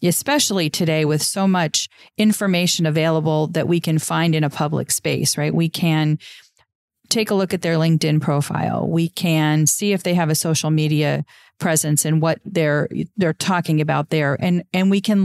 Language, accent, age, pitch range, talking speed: English, American, 40-59, 155-185 Hz, 180 wpm